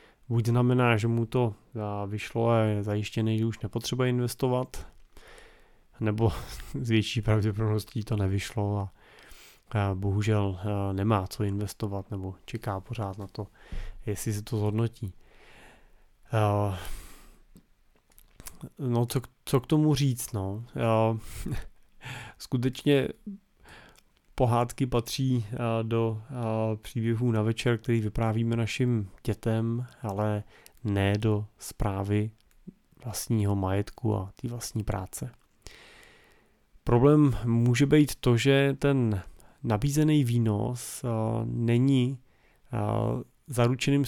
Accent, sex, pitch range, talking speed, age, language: native, male, 105-125 Hz, 95 wpm, 30-49, Czech